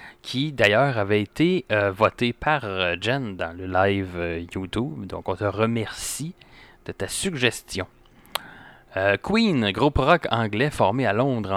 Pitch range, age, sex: 100-130 Hz, 30-49, male